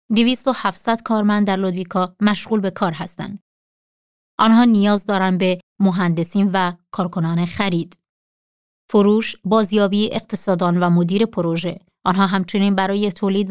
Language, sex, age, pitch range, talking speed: Persian, female, 30-49, 185-225 Hz, 115 wpm